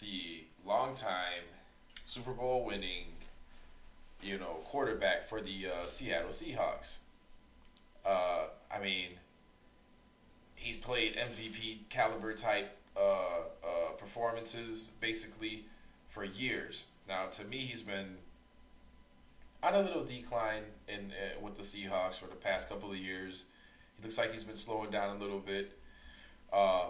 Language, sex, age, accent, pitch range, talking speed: English, male, 20-39, American, 95-115 Hz, 125 wpm